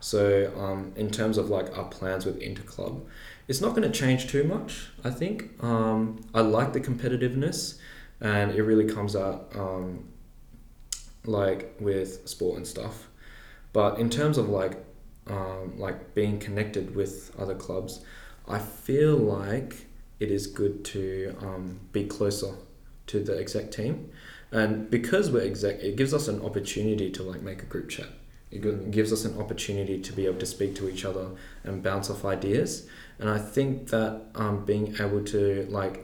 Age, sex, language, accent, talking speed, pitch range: 10-29, male, English, Australian, 170 wpm, 95-110 Hz